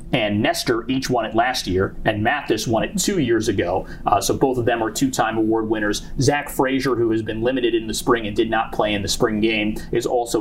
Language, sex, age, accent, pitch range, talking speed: English, male, 30-49, American, 110-135 Hz, 240 wpm